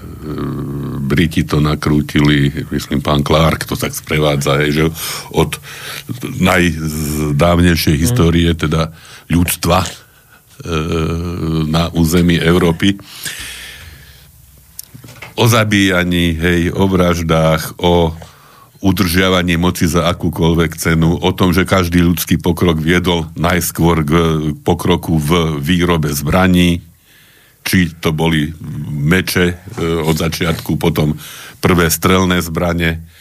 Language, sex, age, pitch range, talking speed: Slovak, male, 50-69, 80-95 Hz, 100 wpm